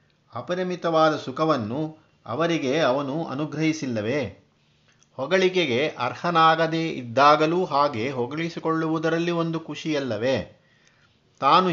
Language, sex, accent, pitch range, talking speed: Kannada, male, native, 135-165 Hz, 65 wpm